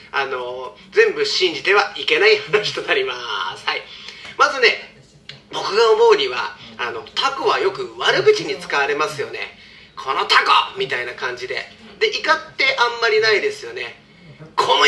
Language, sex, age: Japanese, male, 40-59